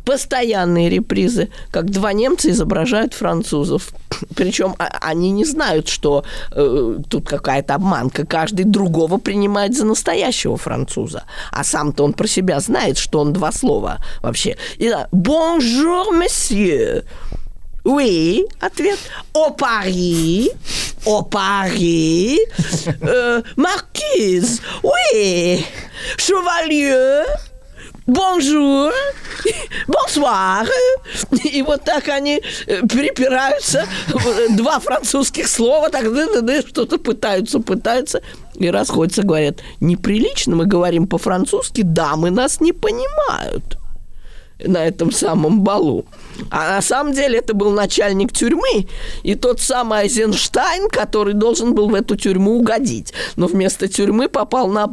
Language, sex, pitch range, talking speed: Russian, female, 185-285 Hz, 105 wpm